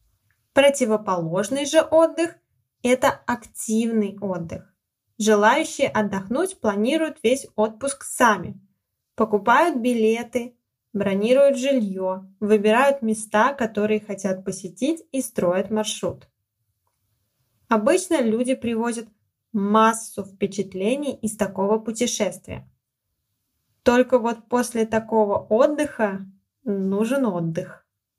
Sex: female